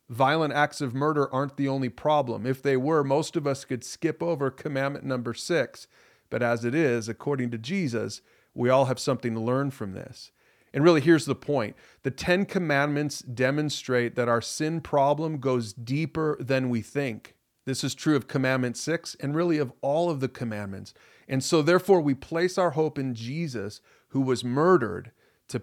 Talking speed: 185 wpm